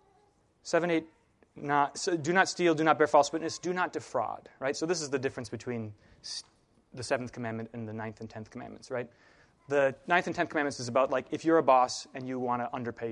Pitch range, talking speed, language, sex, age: 125-170 Hz, 225 wpm, English, male, 30-49